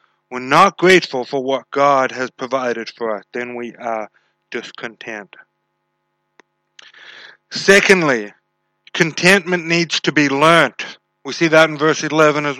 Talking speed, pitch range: 130 wpm, 150-185 Hz